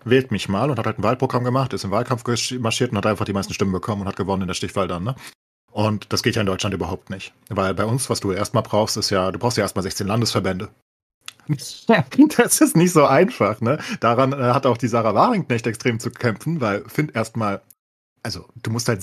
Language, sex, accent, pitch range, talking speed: German, male, German, 105-125 Hz, 235 wpm